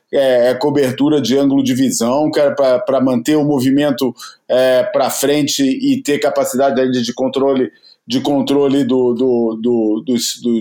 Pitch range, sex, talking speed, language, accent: 130-200 Hz, male, 165 wpm, Portuguese, Brazilian